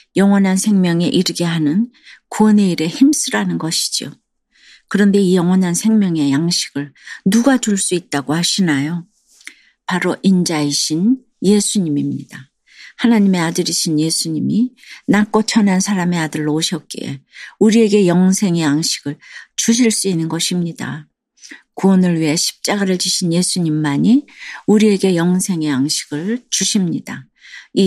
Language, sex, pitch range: Korean, female, 155-205 Hz